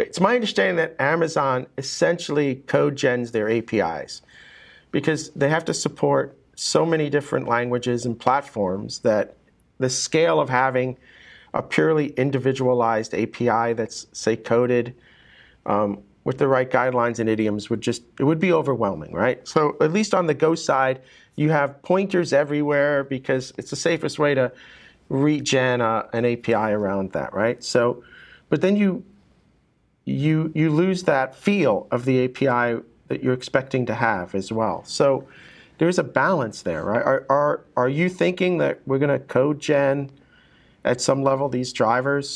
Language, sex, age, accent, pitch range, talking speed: English, male, 40-59, American, 120-150 Hz, 160 wpm